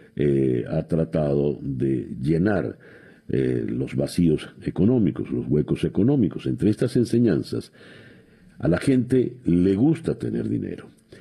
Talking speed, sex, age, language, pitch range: 120 wpm, male, 60-79, Spanish, 75-115 Hz